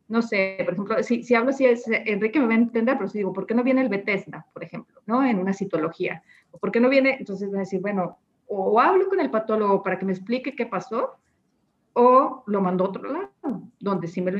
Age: 40-59